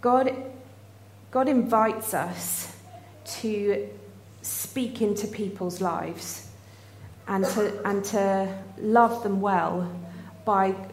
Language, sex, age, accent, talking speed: English, female, 40-59, British, 95 wpm